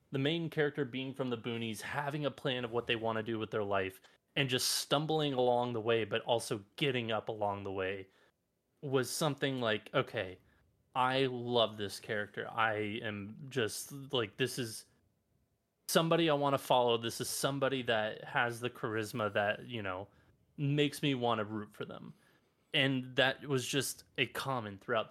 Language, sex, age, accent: English, male, 20-39, American